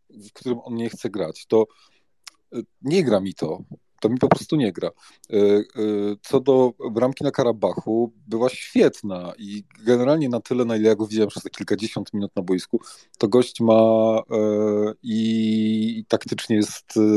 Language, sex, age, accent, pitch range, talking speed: Polish, male, 30-49, native, 105-125 Hz, 155 wpm